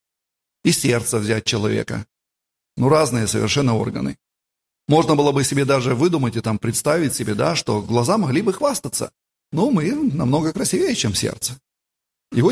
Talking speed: 150 wpm